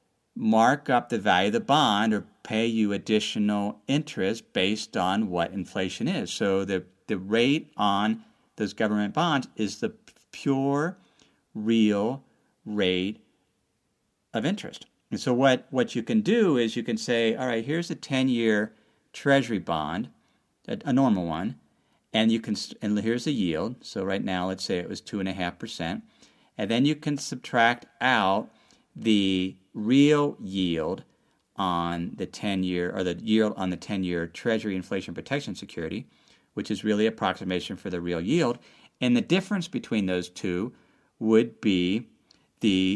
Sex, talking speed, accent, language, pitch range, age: male, 160 wpm, American, English, 95-135 Hz, 50-69